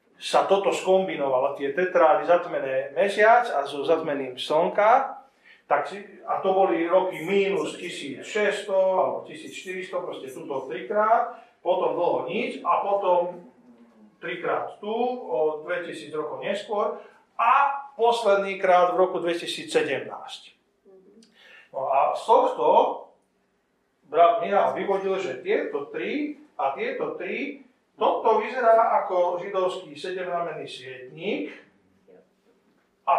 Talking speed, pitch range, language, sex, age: 105 wpm, 160-220 Hz, Slovak, male, 40-59